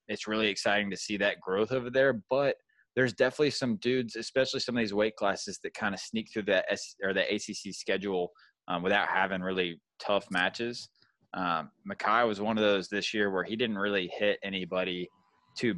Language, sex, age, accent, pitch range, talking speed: English, male, 20-39, American, 95-115 Hz, 200 wpm